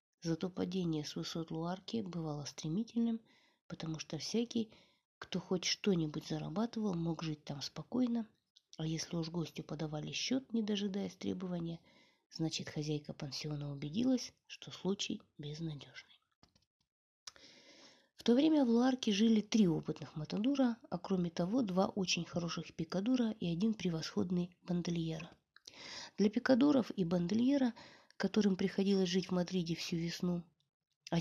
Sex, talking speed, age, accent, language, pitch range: female, 125 wpm, 20-39, native, Russian, 165-225 Hz